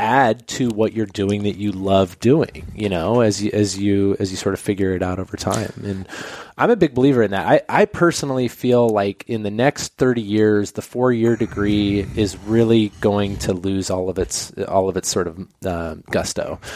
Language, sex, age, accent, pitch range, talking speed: English, male, 20-39, American, 100-120 Hz, 215 wpm